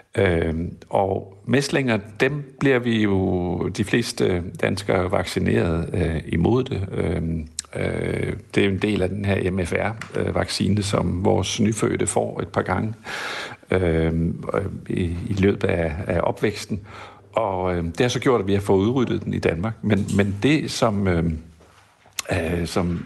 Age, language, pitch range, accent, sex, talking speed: 60-79, Danish, 90-115 Hz, native, male, 155 wpm